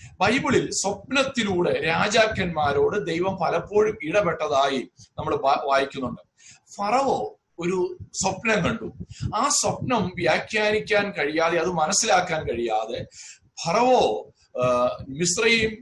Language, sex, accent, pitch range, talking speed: Malayalam, male, native, 160-215 Hz, 80 wpm